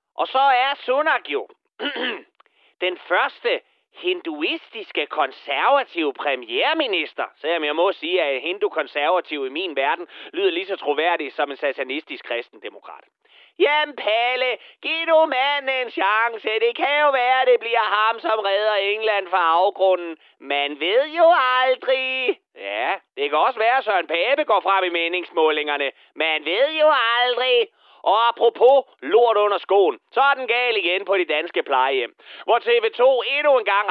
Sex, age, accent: male, 30-49, native